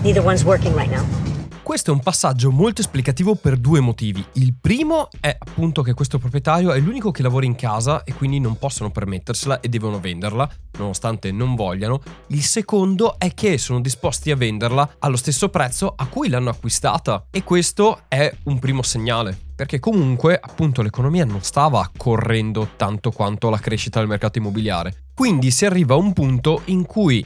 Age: 20-39